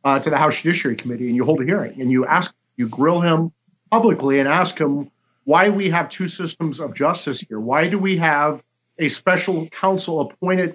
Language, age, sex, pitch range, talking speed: English, 40-59, male, 155-185 Hz, 205 wpm